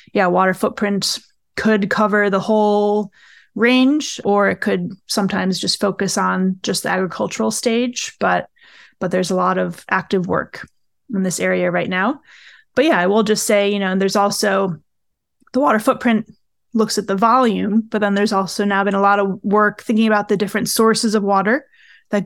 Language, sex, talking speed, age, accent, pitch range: English, female, 180 wpm, 30-49, American, 195-225 Hz